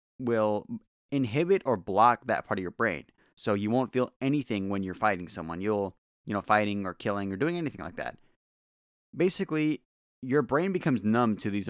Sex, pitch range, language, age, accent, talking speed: male, 95-135 Hz, English, 30-49, American, 185 wpm